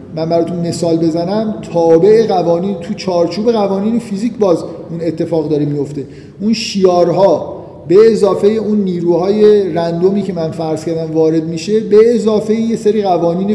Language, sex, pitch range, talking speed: Persian, male, 165-200 Hz, 145 wpm